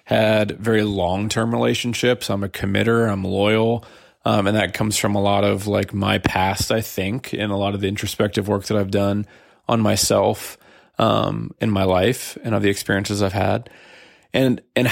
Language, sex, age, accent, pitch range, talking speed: English, male, 20-39, American, 100-115 Hz, 190 wpm